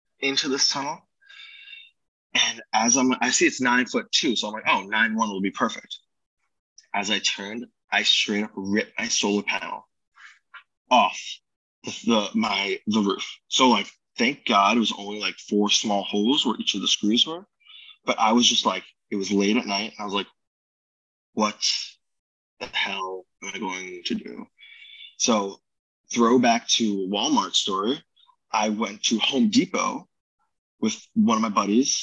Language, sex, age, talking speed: English, male, 20-39, 170 wpm